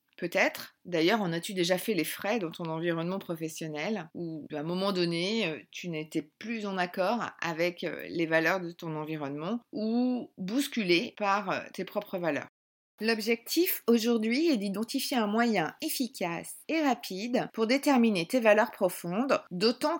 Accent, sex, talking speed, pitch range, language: French, female, 145 wpm, 175-240 Hz, French